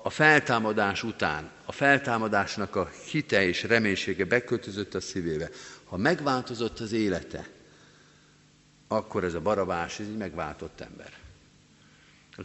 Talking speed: 120 wpm